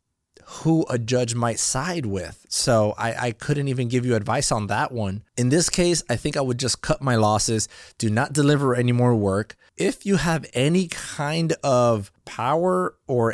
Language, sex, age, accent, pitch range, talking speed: English, male, 20-39, American, 110-140 Hz, 190 wpm